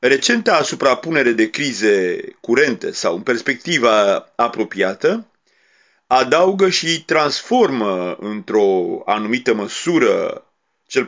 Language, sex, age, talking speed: Romanian, male, 40-59, 85 wpm